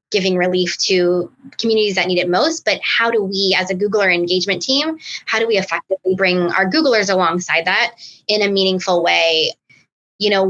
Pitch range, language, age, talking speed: 180-210 Hz, English, 20-39, 185 wpm